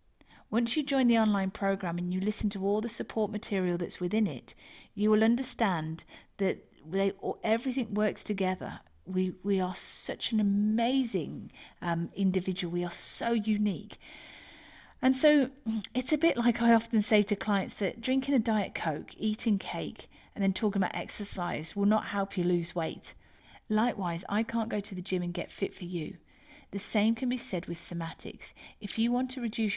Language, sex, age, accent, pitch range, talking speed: English, female, 40-59, British, 185-230 Hz, 180 wpm